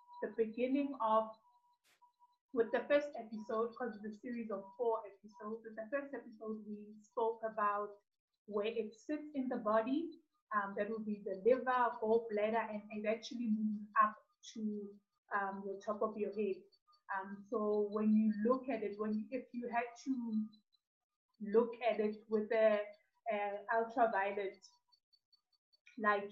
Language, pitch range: English, 210-250 Hz